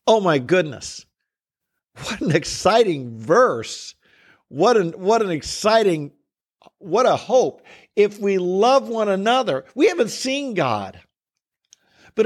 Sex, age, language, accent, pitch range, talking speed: male, 50-69, English, American, 140-200 Hz, 115 wpm